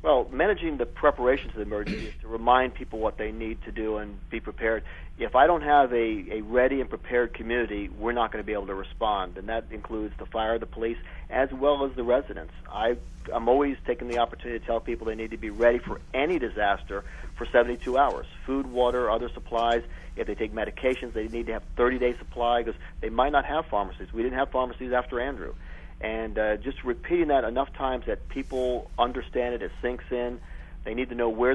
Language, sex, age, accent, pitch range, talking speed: English, male, 40-59, American, 110-125 Hz, 215 wpm